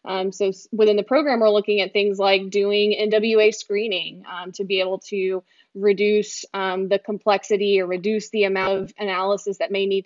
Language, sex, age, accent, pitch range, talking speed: English, female, 20-39, American, 195-210 Hz, 185 wpm